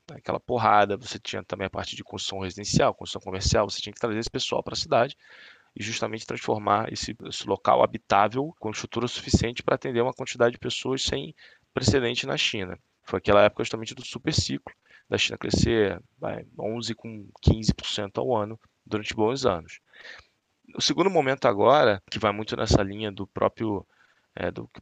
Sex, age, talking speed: male, 20-39, 175 wpm